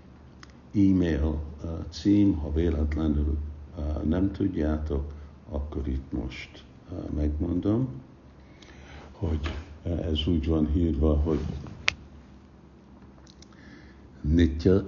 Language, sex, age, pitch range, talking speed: Hungarian, male, 70-89, 70-85 Hz, 80 wpm